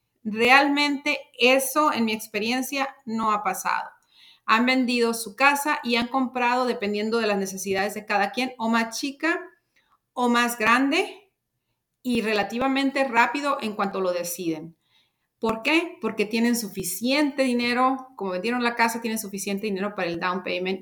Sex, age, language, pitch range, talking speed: female, 40-59, English, 195-240 Hz, 150 wpm